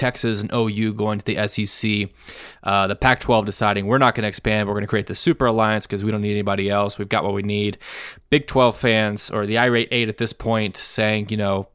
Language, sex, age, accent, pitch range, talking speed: English, male, 20-39, American, 105-140 Hz, 245 wpm